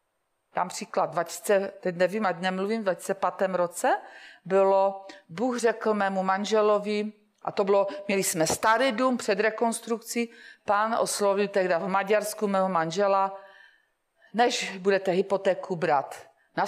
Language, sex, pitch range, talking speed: Czech, female, 180-210 Hz, 130 wpm